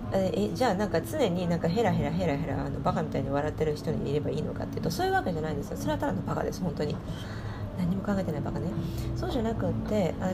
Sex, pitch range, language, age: female, 105-175 Hz, Japanese, 40-59